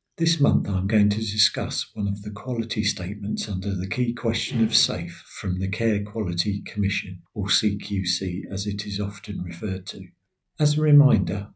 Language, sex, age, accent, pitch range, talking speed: English, male, 50-69, British, 100-125 Hz, 170 wpm